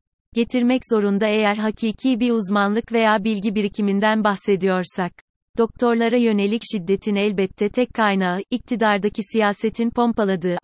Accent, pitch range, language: native, 190-220 Hz, Turkish